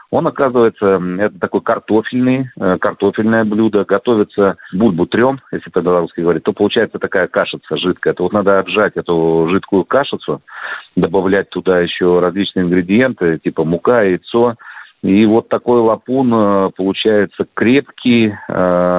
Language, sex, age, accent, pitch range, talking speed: Russian, male, 40-59, native, 90-110 Hz, 125 wpm